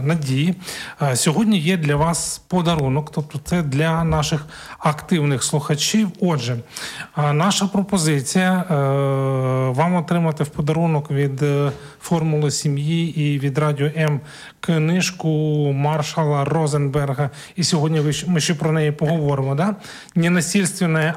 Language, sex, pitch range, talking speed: Ukrainian, male, 145-180 Hz, 110 wpm